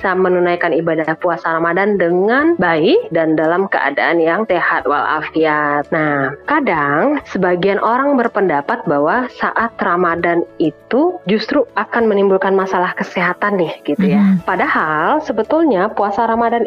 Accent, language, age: native, Indonesian, 30-49